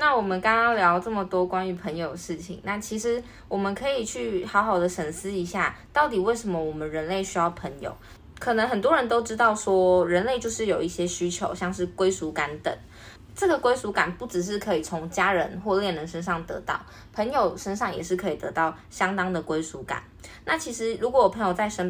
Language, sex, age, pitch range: Chinese, female, 20-39, 170-210 Hz